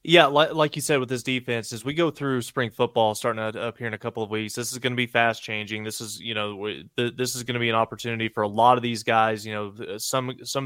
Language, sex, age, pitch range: English, male, 20-39, 110-120 Hz